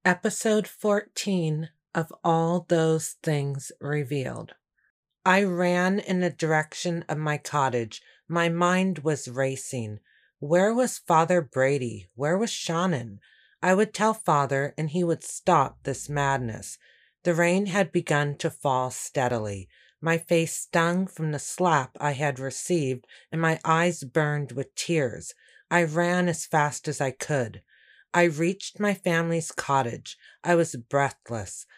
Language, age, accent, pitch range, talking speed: English, 40-59, American, 145-180 Hz, 140 wpm